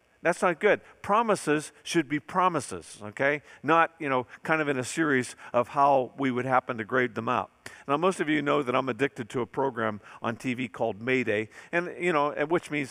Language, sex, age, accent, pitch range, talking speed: English, male, 50-69, American, 125-170 Hz, 205 wpm